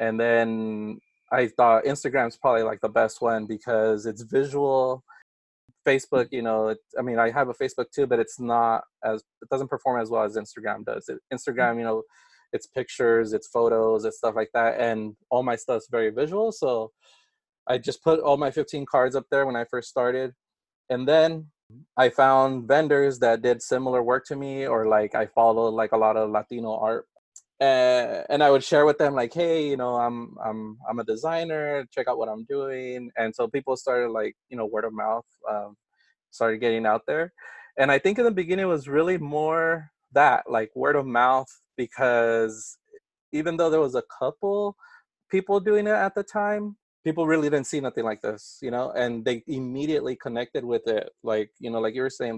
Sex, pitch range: male, 115-150 Hz